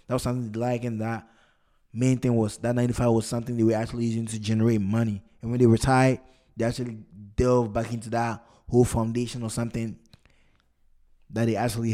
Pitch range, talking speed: 110-130 Hz, 185 wpm